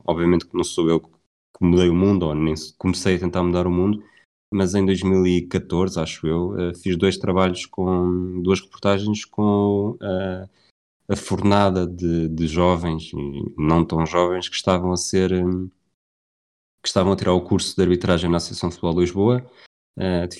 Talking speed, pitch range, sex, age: 170 wpm, 85-100 Hz, male, 20-39